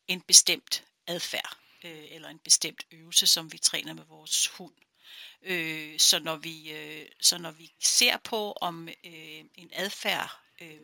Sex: female